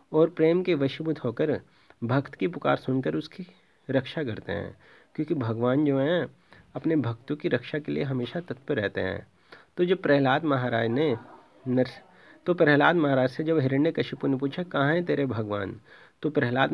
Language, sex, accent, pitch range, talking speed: Hindi, male, native, 130-165 Hz, 170 wpm